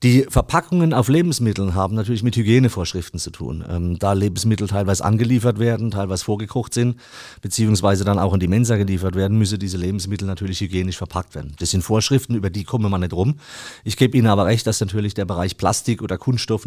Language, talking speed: German, 200 wpm